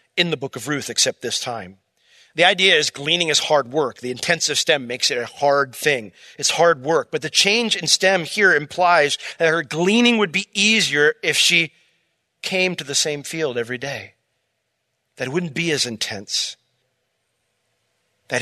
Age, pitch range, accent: 40-59, 135-175 Hz, American